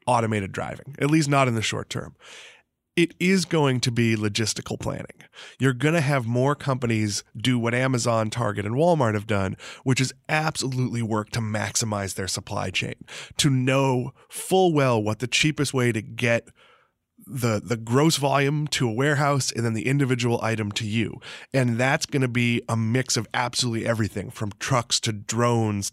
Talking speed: 180 wpm